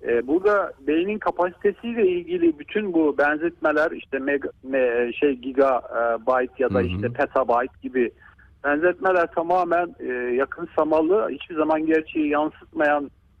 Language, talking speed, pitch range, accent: Turkish, 105 wpm, 125-170 Hz, native